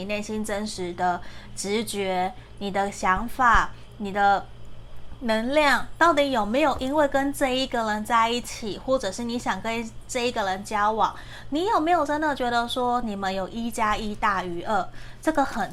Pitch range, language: 205-260 Hz, Chinese